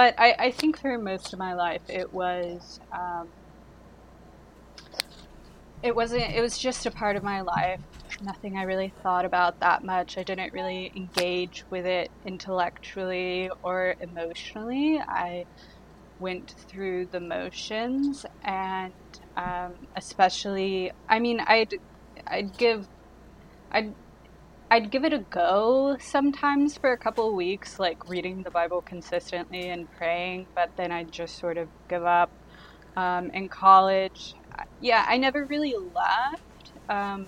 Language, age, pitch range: English, 20-39, 180-215 Hz